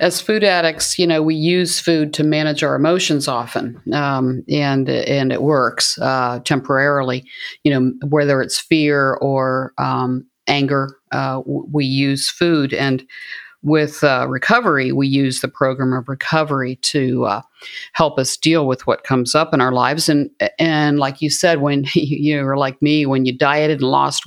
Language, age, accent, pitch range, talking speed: English, 50-69, American, 135-155 Hz, 180 wpm